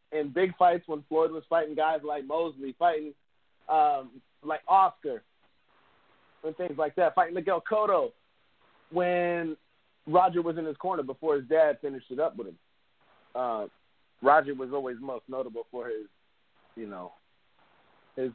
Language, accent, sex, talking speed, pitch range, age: English, American, male, 150 wpm, 135-170 Hz, 30-49